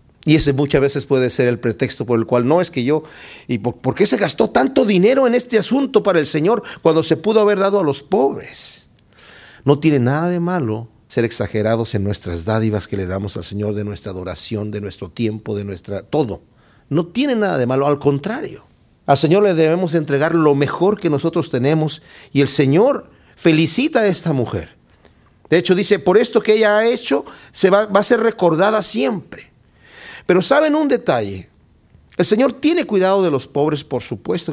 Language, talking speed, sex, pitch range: Spanish, 200 wpm, male, 125-200 Hz